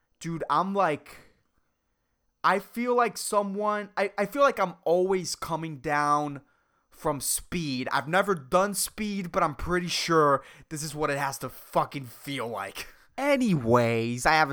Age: 20-39